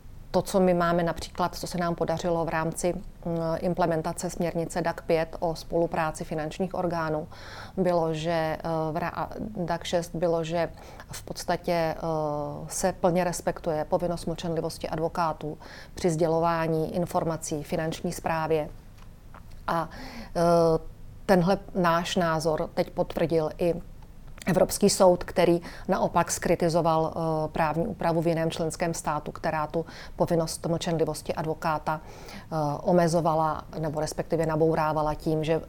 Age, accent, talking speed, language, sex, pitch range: 40-59, native, 110 wpm, Czech, female, 160-175 Hz